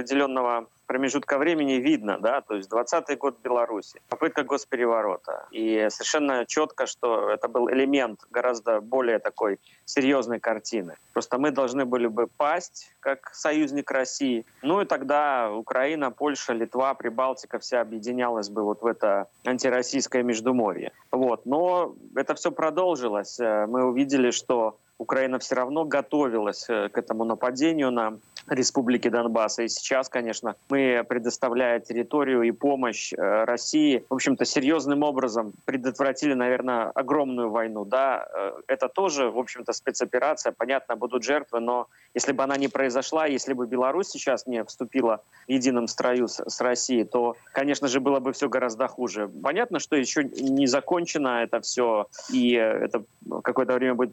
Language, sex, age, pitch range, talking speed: Russian, male, 20-39, 120-140 Hz, 145 wpm